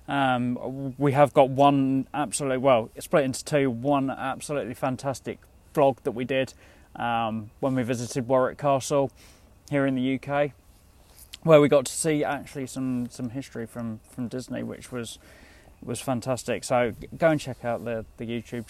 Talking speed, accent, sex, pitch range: 165 wpm, British, male, 115-130 Hz